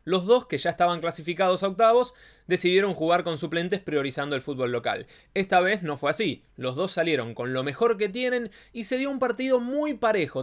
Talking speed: 205 wpm